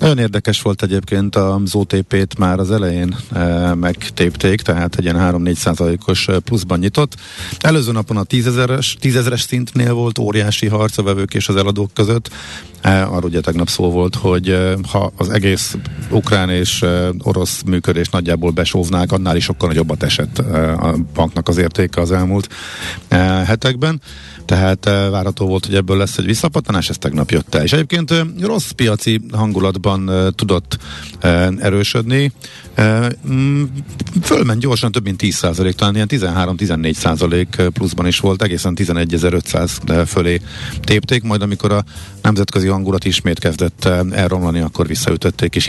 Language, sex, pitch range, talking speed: Hungarian, male, 90-110 Hz, 135 wpm